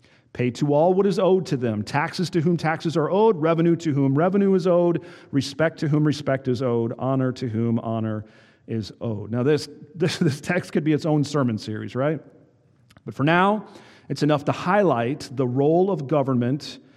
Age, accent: 40-59, American